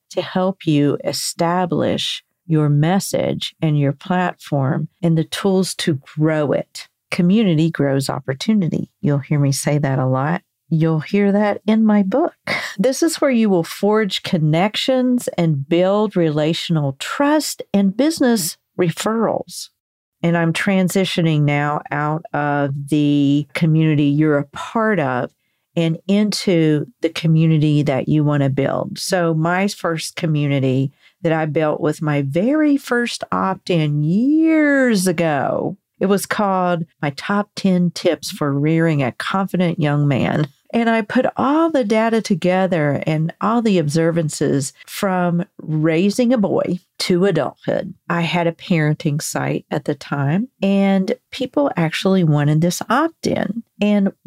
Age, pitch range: 50-69, 155-200 Hz